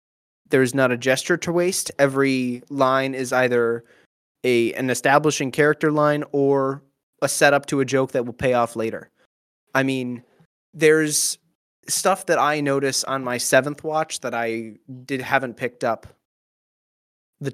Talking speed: 150 wpm